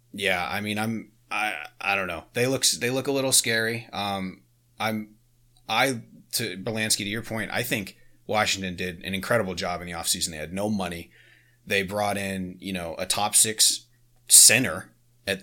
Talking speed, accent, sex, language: 185 wpm, American, male, English